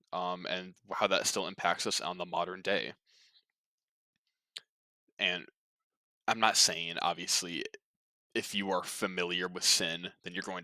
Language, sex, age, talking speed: English, male, 20-39, 140 wpm